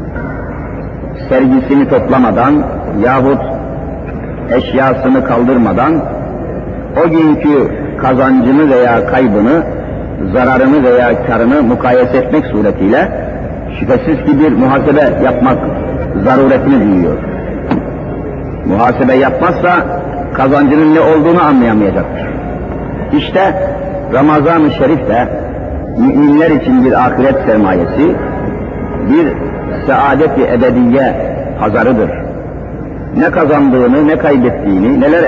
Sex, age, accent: male, 50-69, native